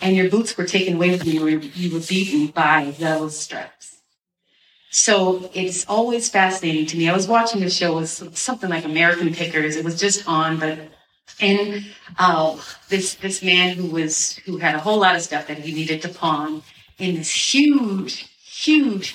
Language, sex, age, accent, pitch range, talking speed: English, female, 40-59, American, 170-220 Hz, 185 wpm